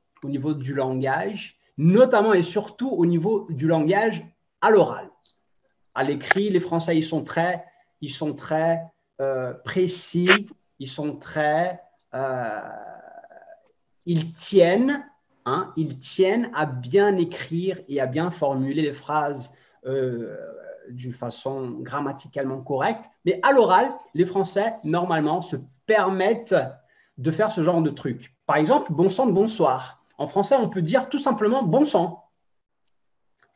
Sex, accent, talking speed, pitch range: male, French, 140 wpm, 145-225 Hz